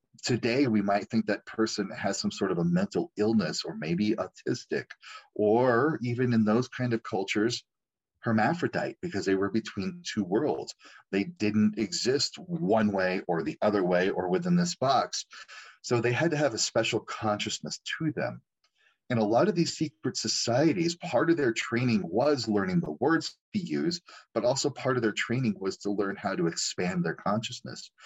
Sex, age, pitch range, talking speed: male, 30-49, 100-165 Hz, 180 wpm